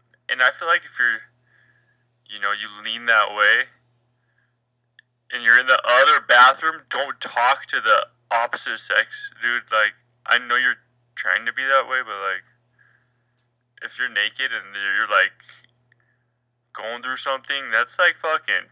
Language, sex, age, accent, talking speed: English, male, 10-29, American, 155 wpm